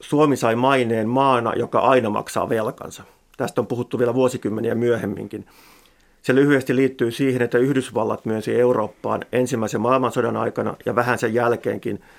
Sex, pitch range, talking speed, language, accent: male, 110-130 Hz, 145 wpm, Finnish, native